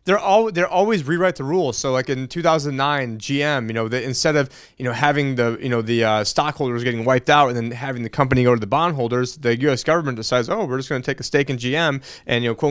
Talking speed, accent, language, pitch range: 265 wpm, American, English, 125-160 Hz